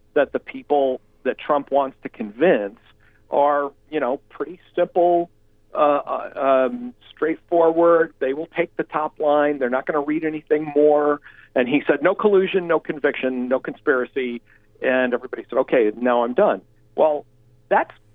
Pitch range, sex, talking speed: 115-155 Hz, male, 155 wpm